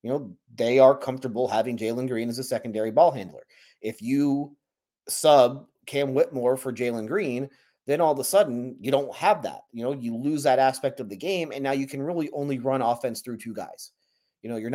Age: 30-49